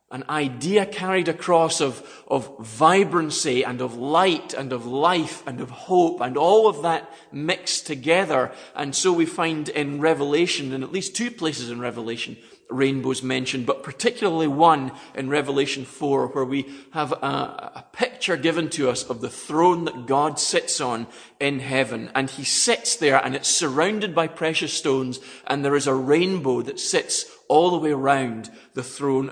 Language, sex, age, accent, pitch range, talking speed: English, male, 30-49, British, 130-165 Hz, 170 wpm